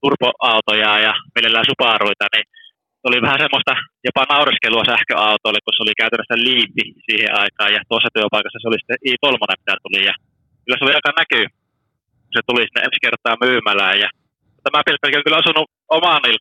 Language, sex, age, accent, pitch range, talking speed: Finnish, male, 20-39, native, 115-145 Hz, 170 wpm